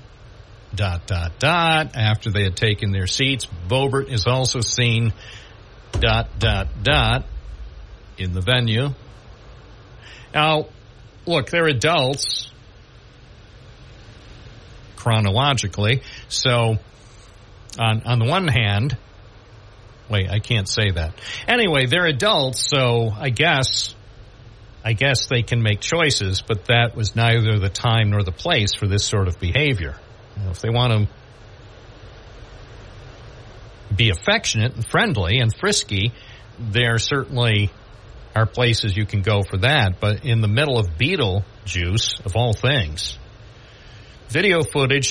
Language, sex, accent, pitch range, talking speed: English, male, American, 105-125 Hz, 120 wpm